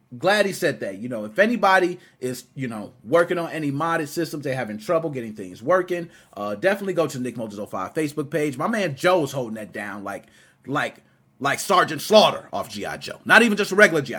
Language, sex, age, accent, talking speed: English, male, 30-49, American, 210 wpm